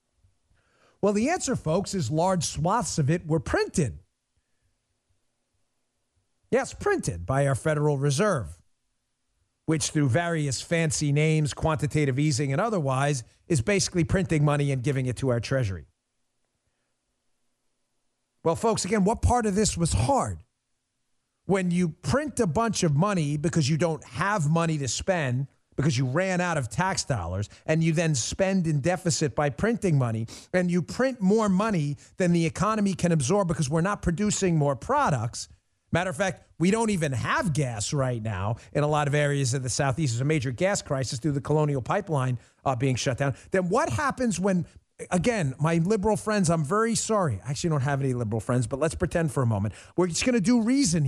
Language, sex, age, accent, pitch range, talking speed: English, male, 40-59, American, 130-185 Hz, 180 wpm